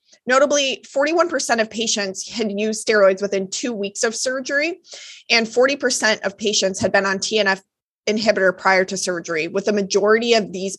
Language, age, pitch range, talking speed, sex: English, 20-39, 195-240 Hz, 160 wpm, female